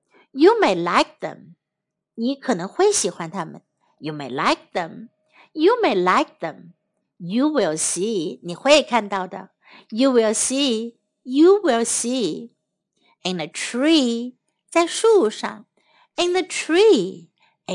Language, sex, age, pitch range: Chinese, female, 60-79, 210-325 Hz